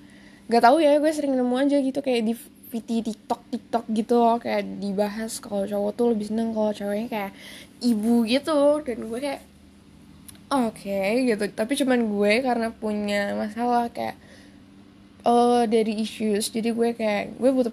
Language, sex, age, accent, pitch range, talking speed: Indonesian, female, 10-29, native, 210-250 Hz, 160 wpm